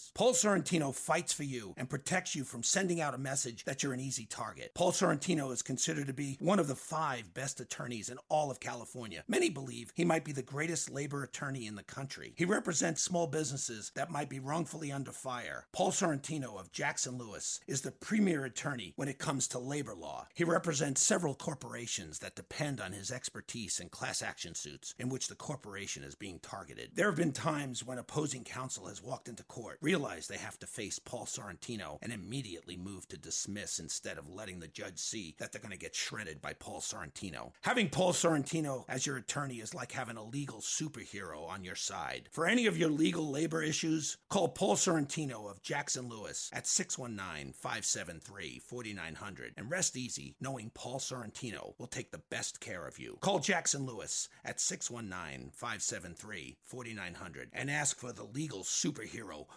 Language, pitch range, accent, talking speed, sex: English, 120-160 Hz, American, 185 wpm, male